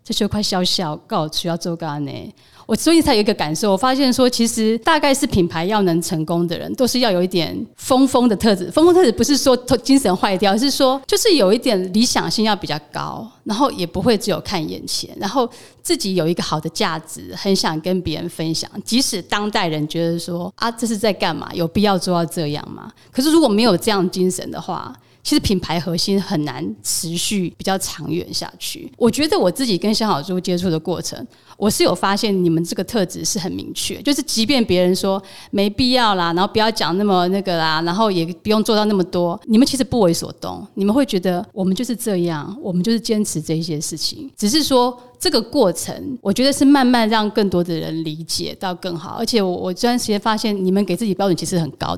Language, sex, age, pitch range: Chinese, female, 30-49, 175-230 Hz